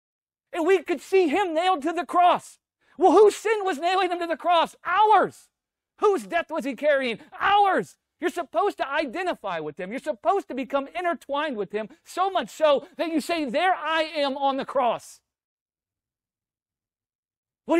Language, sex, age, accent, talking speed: English, male, 40-59, American, 170 wpm